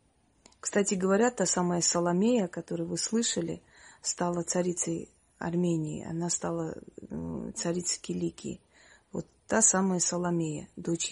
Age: 30-49